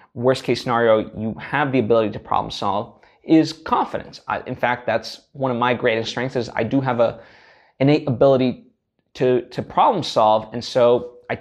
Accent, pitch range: American, 120-145 Hz